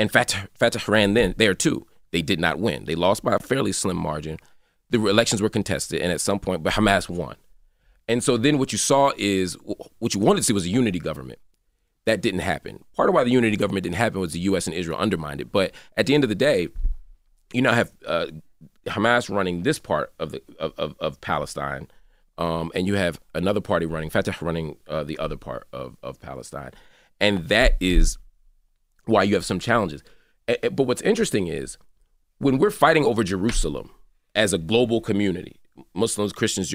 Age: 30-49